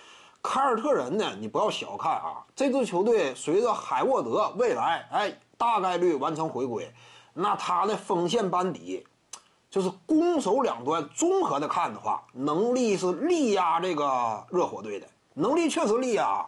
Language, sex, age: Chinese, male, 30-49